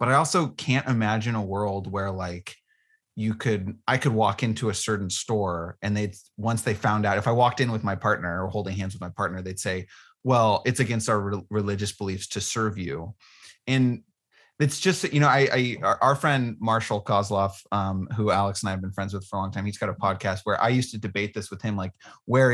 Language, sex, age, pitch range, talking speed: English, male, 30-49, 100-130 Hz, 230 wpm